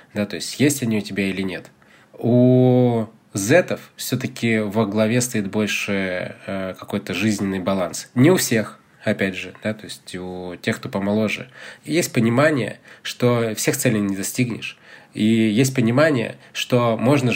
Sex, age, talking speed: male, 20-39, 150 wpm